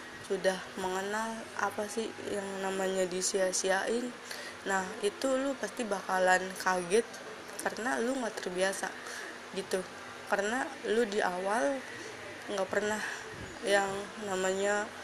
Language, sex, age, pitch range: Indonesian, female, 20-39, 190-210 Hz